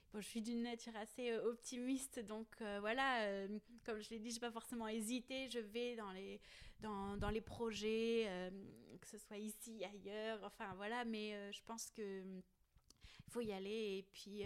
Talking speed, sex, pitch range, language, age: 180 wpm, female, 205-240 Hz, French, 20-39